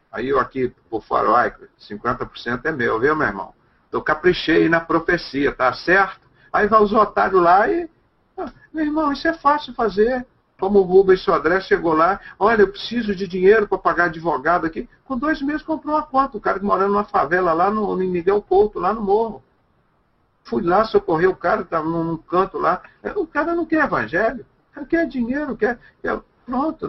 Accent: Brazilian